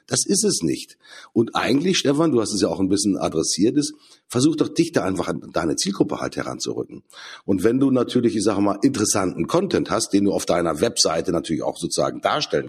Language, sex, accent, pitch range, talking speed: German, male, German, 100-125 Hz, 215 wpm